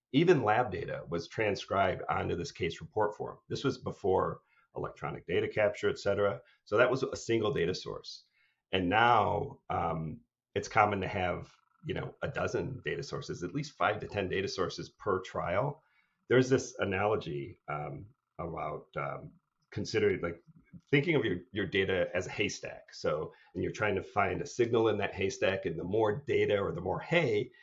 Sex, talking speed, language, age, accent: male, 180 wpm, English, 40-59, American